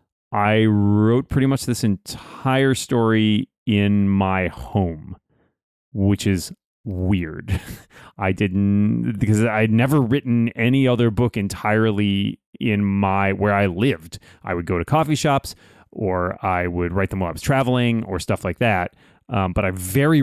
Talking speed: 150 wpm